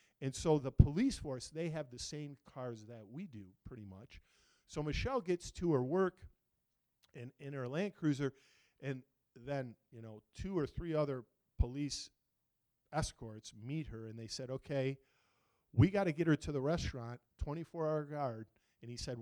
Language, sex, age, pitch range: English, male, 40-59, 120-155 Hz